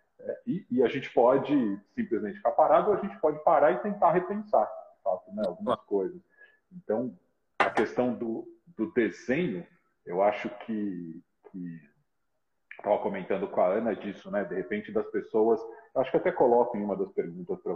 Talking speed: 175 wpm